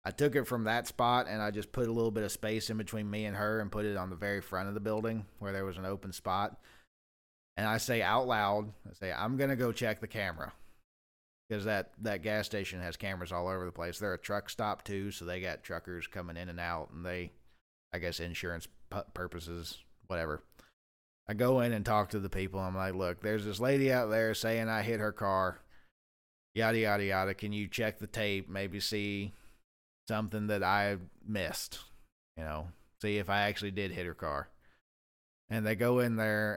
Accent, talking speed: American, 215 wpm